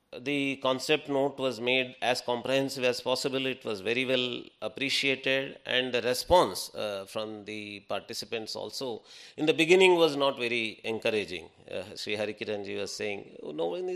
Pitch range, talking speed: 115-145 Hz, 155 wpm